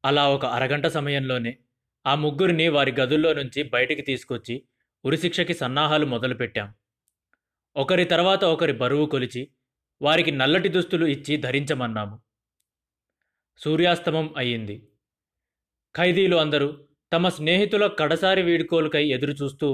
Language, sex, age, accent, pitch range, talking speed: Telugu, male, 30-49, native, 130-170 Hz, 100 wpm